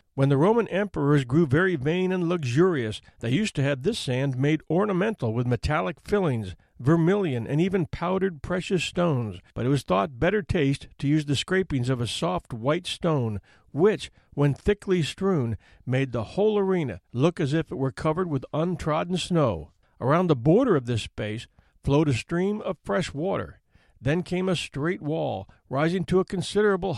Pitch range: 130-175 Hz